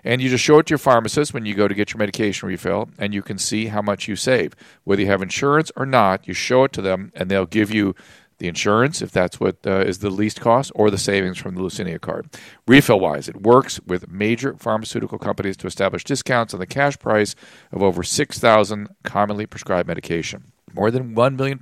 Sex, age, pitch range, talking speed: male, 40-59, 95-125 Hz, 220 wpm